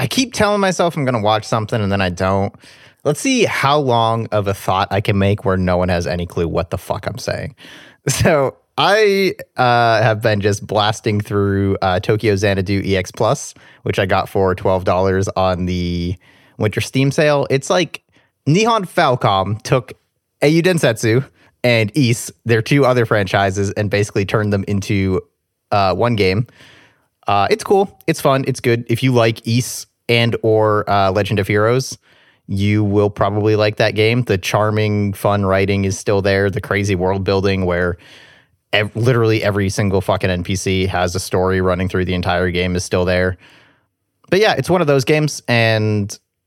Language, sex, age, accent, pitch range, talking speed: English, male, 30-49, American, 95-120 Hz, 175 wpm